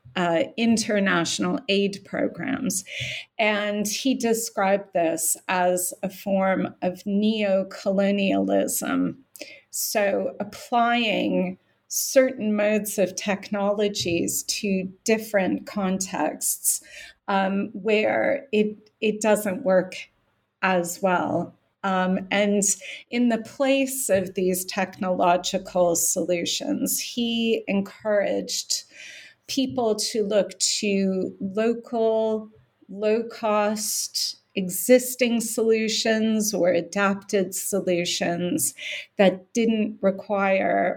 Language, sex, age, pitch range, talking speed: English, female, 30-49, 185-220 Hz, 80 wpm